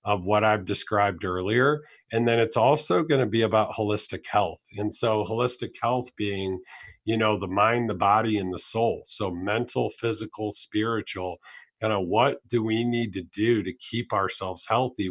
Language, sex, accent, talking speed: English, male, American, 180 wpm